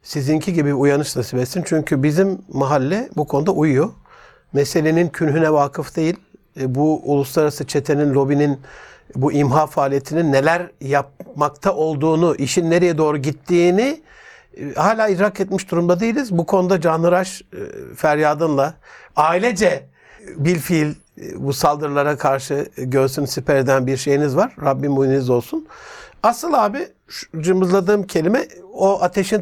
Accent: native